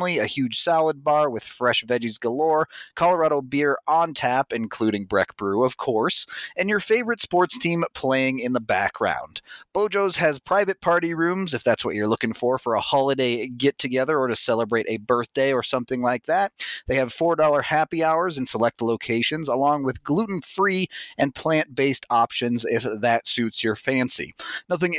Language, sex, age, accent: English, male, 30-49, American